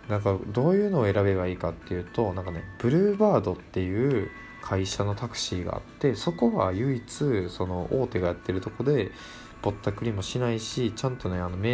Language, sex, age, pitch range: Japanese, male, 20-39, 90-115 Hz